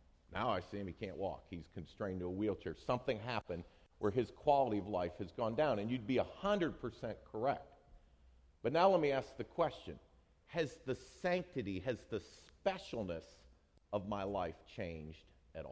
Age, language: 50-69, English